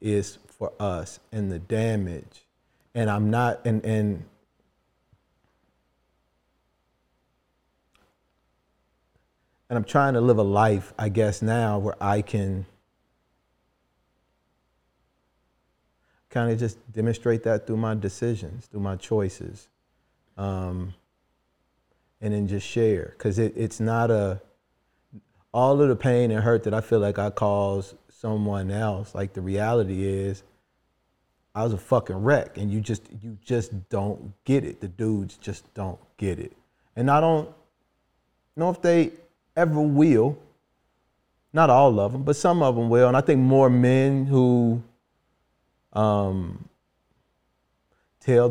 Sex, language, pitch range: male, English, 100-125 Hz